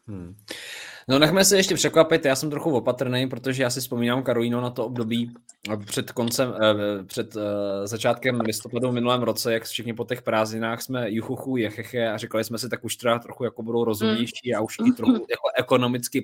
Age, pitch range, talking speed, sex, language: 20-39, 110-135 Hz, 195 wpm, male, Czech